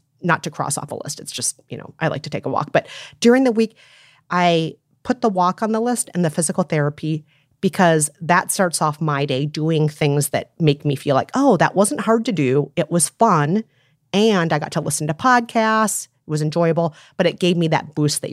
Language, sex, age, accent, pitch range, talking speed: English, female, 30-49, American, 150-195 Hz, 230 wpm